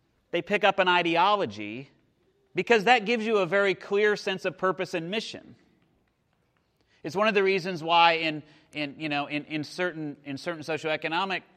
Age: 30-49